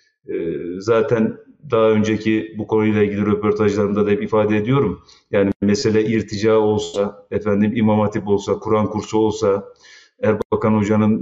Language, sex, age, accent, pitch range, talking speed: Turkish, male, 40-59, native, 100-115 Hz, 135 wpm